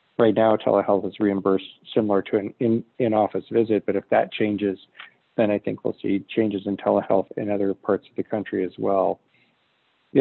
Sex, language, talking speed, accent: male, English, 180 wpm, American